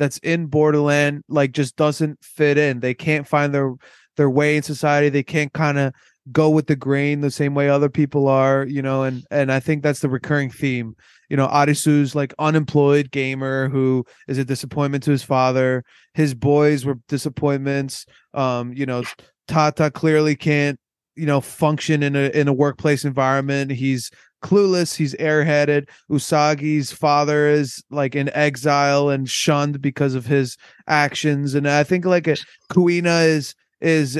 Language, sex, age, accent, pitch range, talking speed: English, male, 20-39, American, 135-150 Hz, 170 wpm